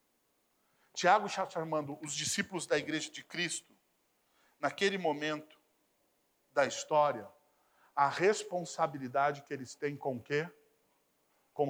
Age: 50-69